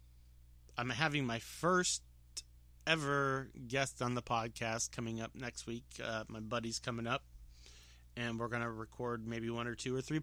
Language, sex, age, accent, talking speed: English, male, 30-49, American, 170 wpm